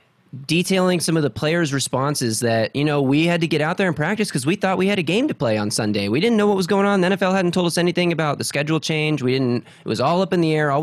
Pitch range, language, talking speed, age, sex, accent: 125-175 Hz, English, 305 wpm, 20-39, male, American